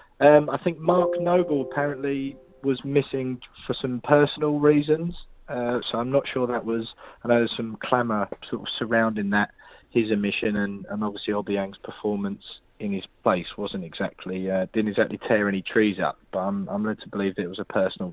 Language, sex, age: English, male, 20-39